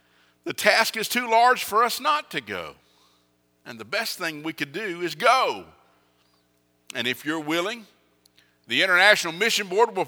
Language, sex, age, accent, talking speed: English, male, 50-69, American, 165 wpm